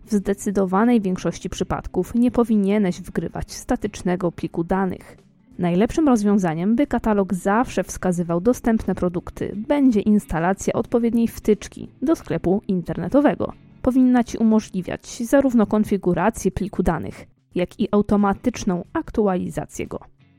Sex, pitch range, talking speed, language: female, 185-230 Hz, 110 wpm, Polish